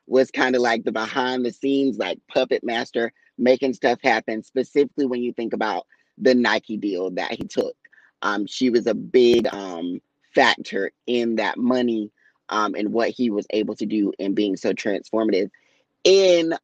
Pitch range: 125-160 Hz